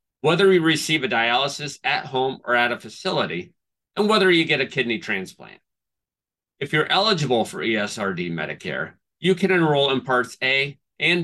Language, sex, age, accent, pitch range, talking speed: English, male, 40-59, American, 120-175 Hz, 165 wpm